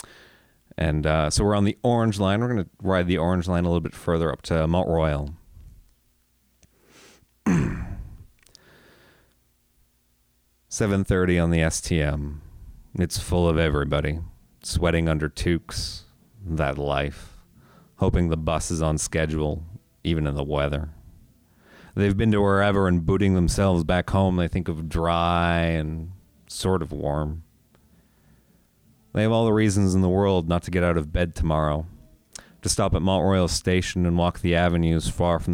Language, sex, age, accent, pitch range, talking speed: English, male, 30-49, American, 80-95 Hz, 150 wpm